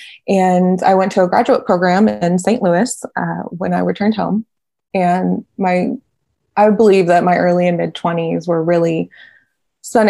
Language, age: English, 20-39